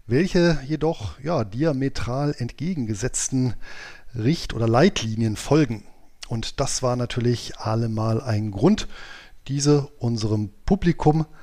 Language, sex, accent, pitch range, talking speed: German, male, German, 110-140 Hz, 95 wpm